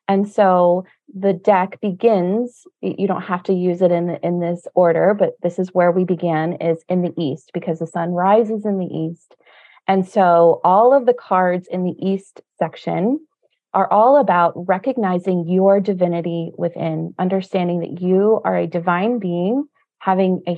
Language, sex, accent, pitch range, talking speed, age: English, female, American, 175-220 Hz, 170 wpm, 30-49